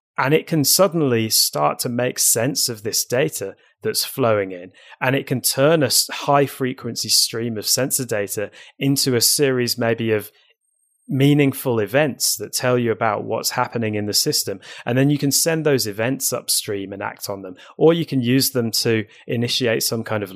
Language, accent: English, British